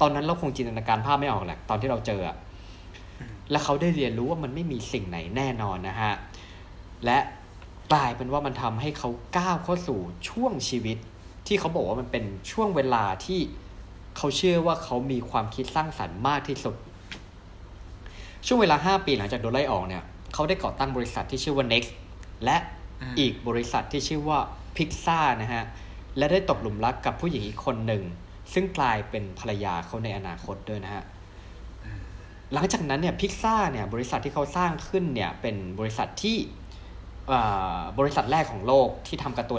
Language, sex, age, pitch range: Thai, male, 20-39, 95-145 Hz